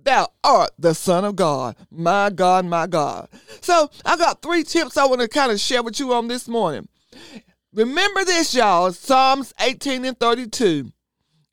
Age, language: 40-59, English